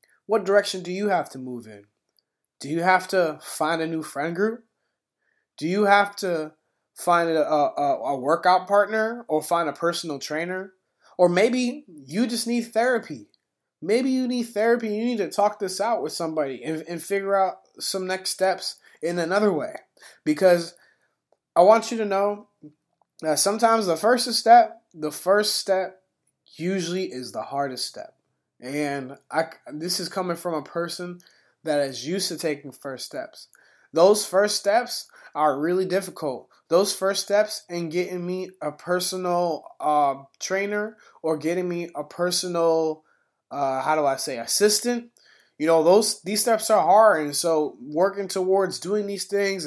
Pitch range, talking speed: 160-205 Hz, 160 wpm